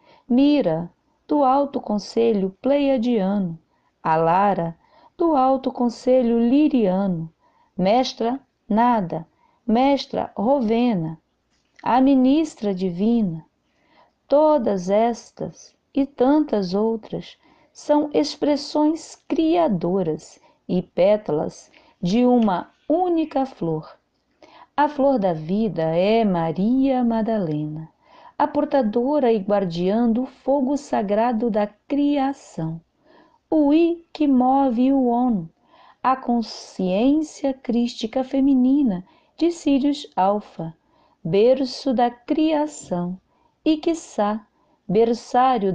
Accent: Brazilian